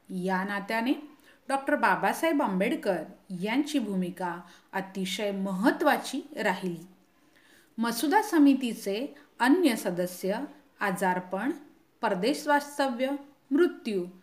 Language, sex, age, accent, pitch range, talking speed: Hindi, female, 40-59, native, 190-295 Hz, 65 wpm